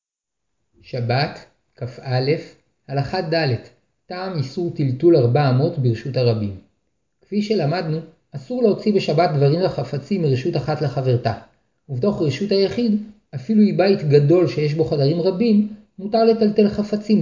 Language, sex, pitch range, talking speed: Hebrew, male, 145-200 Hz, 120 wpm